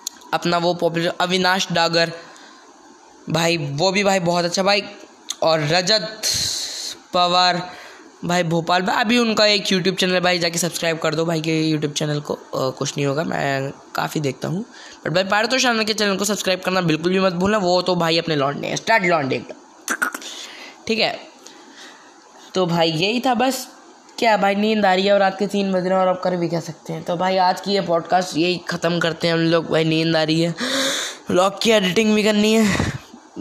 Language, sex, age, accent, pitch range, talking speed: Hindi, female, 20-39, native, 165-205 Hz, 195 wpm